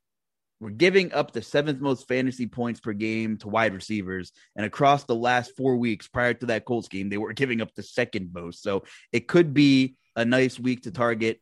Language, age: English, 20-39